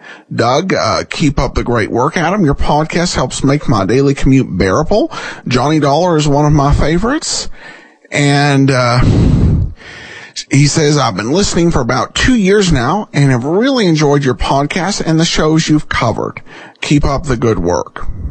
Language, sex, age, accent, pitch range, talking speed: English, male, 50-69, American, 130-185 Hz, 165 wpm